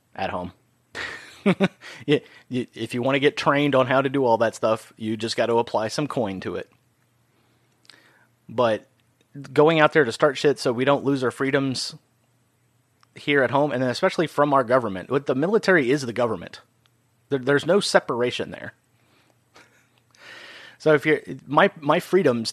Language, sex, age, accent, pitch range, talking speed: English, male, 30-49, American, 115-140 Hz, 160 wpm